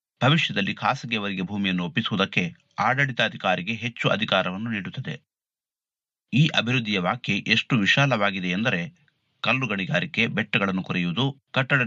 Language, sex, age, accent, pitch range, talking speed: Kannada, male, 30-49, native, 100-130 Hz, 90 wpm